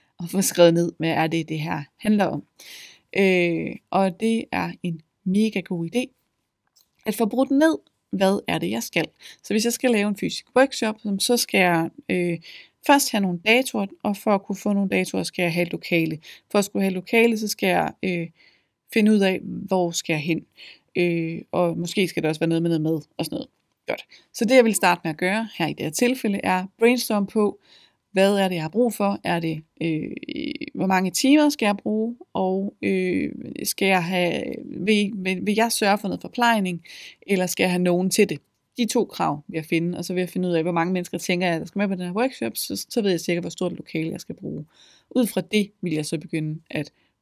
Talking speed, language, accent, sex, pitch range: 235 wpm, Danish, native, female, 170-215 Hz